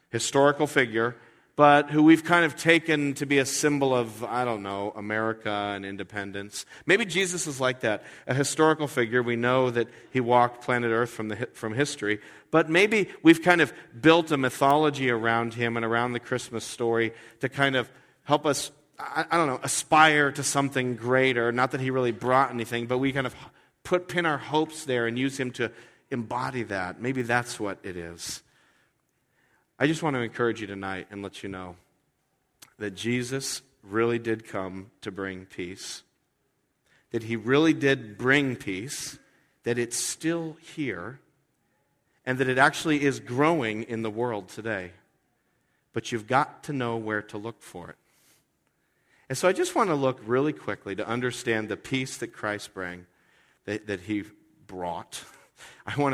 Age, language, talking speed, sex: 40-59, English, 175 wpm, male